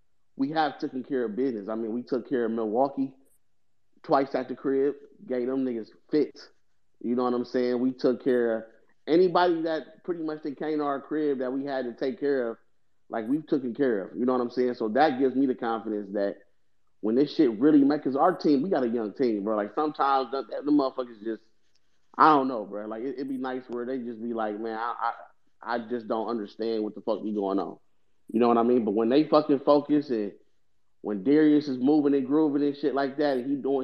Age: 30-49